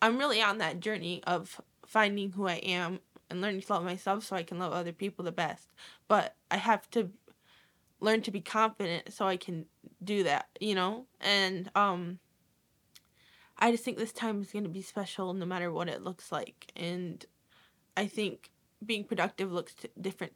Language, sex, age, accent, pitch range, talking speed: English, female, 10-29, American, 180-210 Hz, 185 wpm